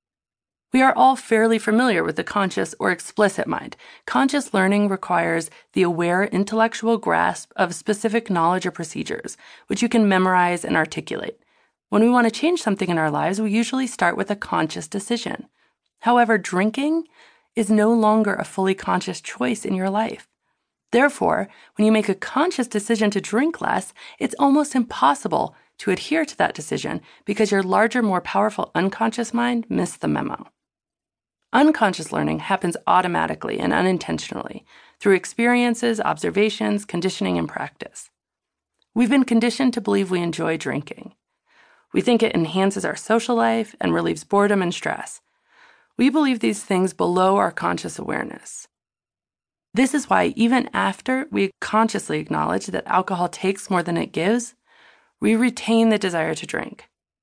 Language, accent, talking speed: English, American, 155 wpm